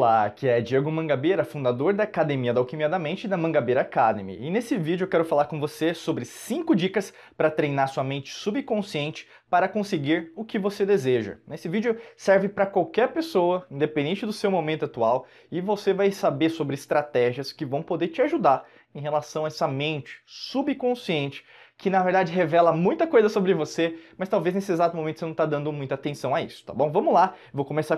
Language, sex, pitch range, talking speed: Portuguese, male, 145-200 Hz, 195 wpm